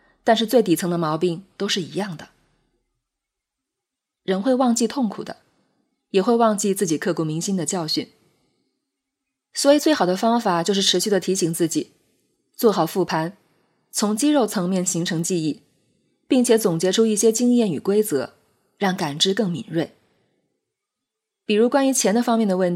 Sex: female